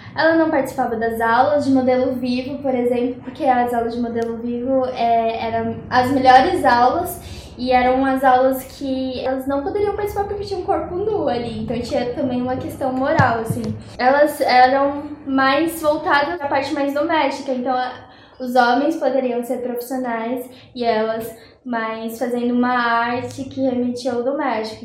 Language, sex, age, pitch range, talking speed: Portuguese, female, 10-29, 235-280 Hz, 165 wpm